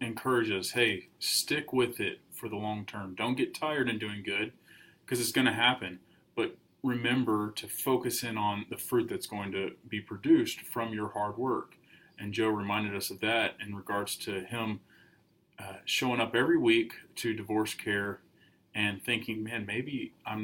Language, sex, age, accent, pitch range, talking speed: English, male, 30-49, American, 105-135 Hz, 180 wpm